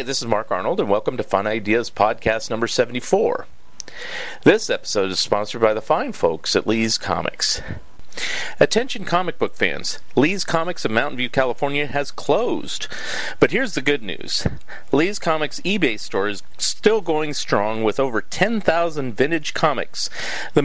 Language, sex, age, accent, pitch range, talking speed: English, male, 40-59, American, 125-200 Hz, 155 wpm